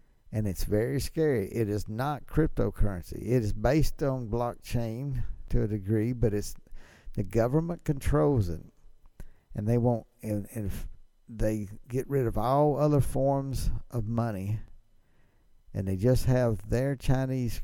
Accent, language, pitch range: American, English, 105-135 Hz